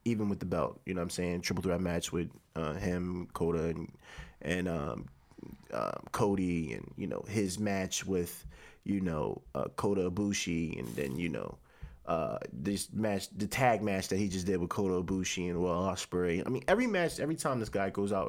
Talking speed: 205 wpm